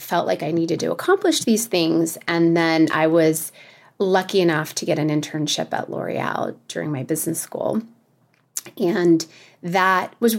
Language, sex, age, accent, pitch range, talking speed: English, female, 30-49, American, 160-200 Hz, 155 wpm